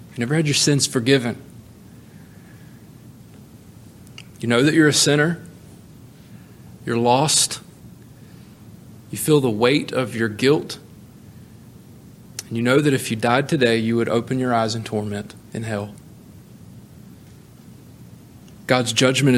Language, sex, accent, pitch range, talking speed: English, male, American, 110-135 Hz, 125 wpm